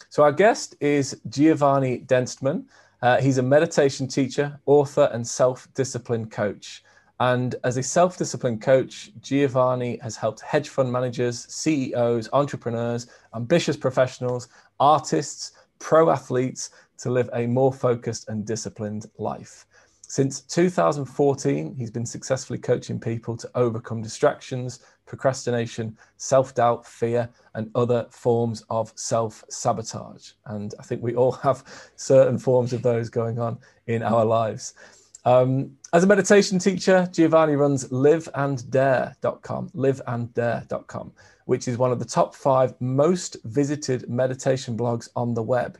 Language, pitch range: English, 120-140 Hz